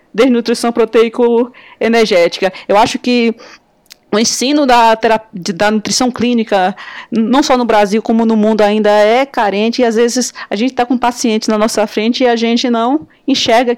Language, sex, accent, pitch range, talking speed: Portuguese, female, Brazilian, 210-250 Hz, 165 wpm